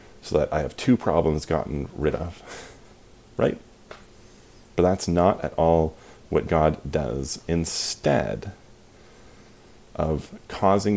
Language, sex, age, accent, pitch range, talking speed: English, male, 30-49, American, 80-100 Hz, 115 wpm